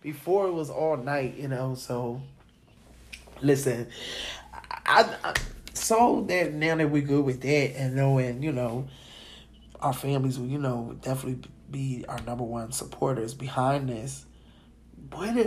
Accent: American